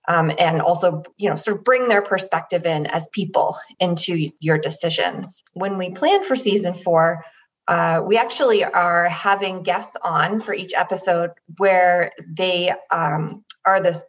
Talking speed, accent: 160 wpm, American